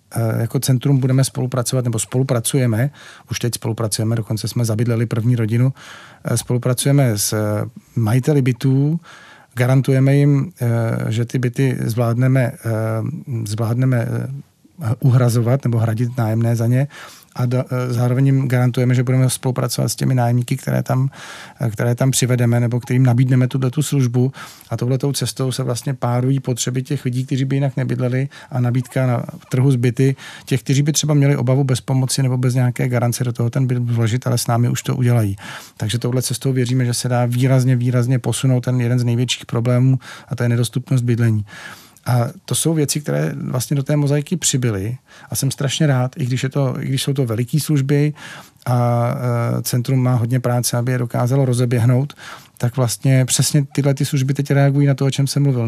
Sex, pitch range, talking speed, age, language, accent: male, 120-135 Hz, 170 wpm, 40-59, Czech, native